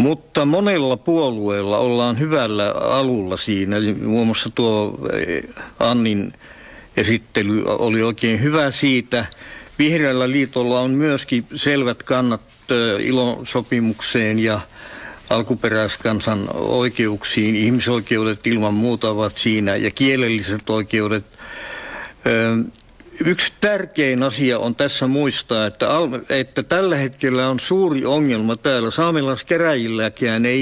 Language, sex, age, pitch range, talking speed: Czech, male, 60-79, 110-140 Hz, 100 wpm